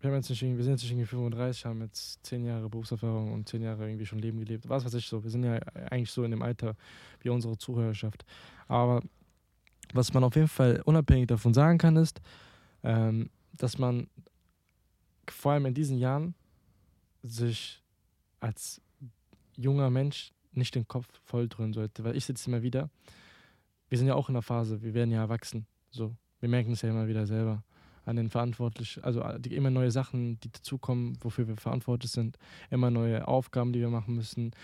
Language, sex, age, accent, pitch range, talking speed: German, male, 20-39, German, 110-130 Hz, 180 wpm